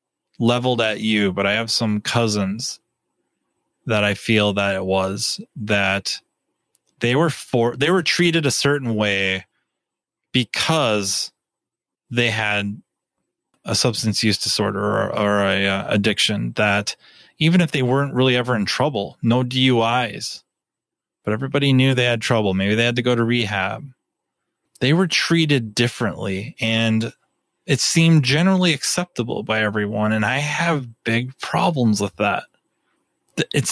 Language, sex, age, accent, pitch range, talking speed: English, male, 30-49, American, 105-145 Hz, 140 wpm